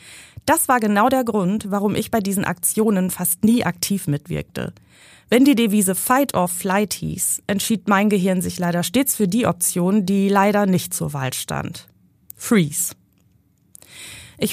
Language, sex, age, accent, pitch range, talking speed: German, female, 30-49, German, 170-210 Hz, 155 wpm